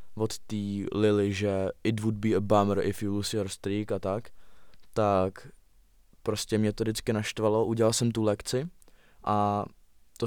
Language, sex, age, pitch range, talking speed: Czech, male, 20-39, 105-115 Hz, 165 wpm